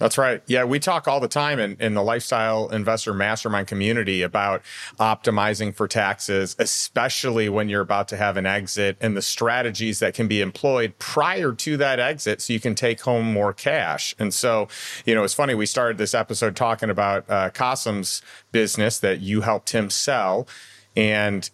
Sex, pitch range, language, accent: male, 100-120 Hz, English, American